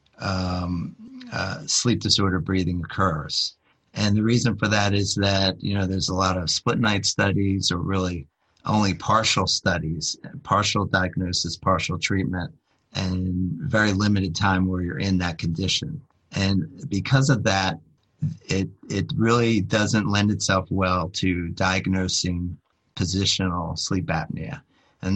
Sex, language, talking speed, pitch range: male, English, 135 wpm, 90-105 Hz